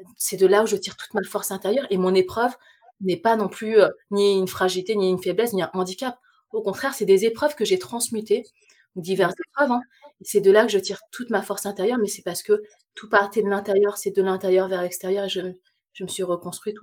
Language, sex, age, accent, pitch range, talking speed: French, female, 20-39, French, 195-270 Hz, 240 wpm